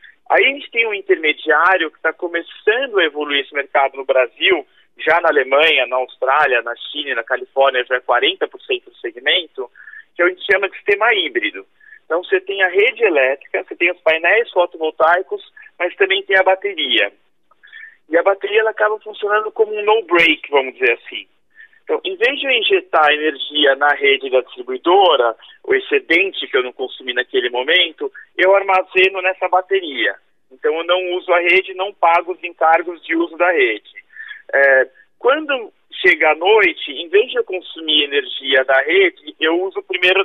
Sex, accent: male, Brazilian